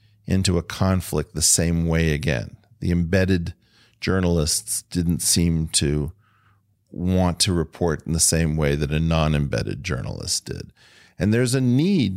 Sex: male